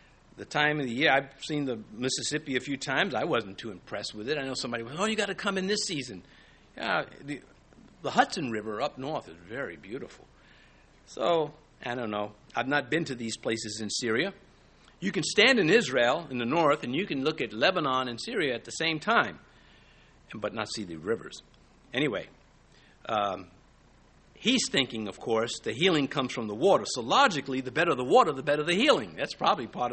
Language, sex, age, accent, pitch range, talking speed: English, male, 60-79, American, 115-170 Hz, 205 wpm